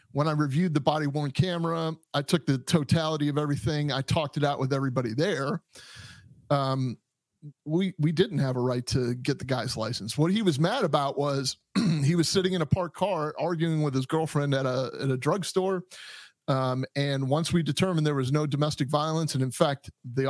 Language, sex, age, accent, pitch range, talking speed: English, male, 30-49, American, 135-165 Hz, 200 wpm